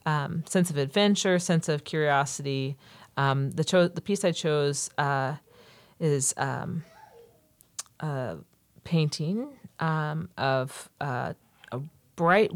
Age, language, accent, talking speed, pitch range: 40-59, English, American, 115 wpm, 135-170 Hz